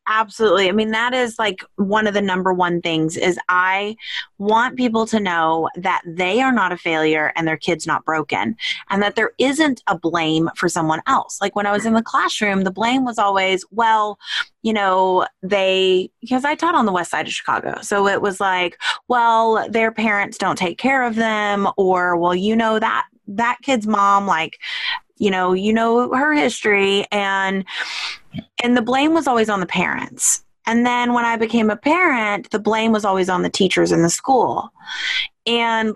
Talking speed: 195 wpm